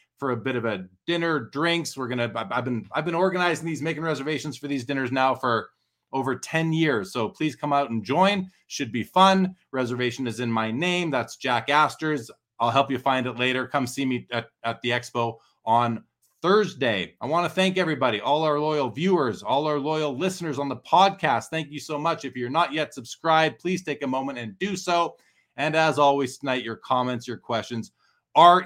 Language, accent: English, American